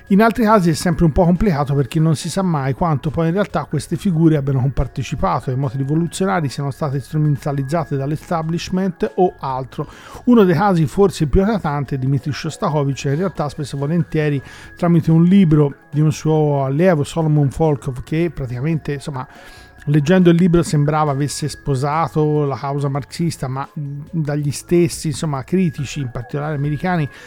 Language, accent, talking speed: Italian, native, 160 wpm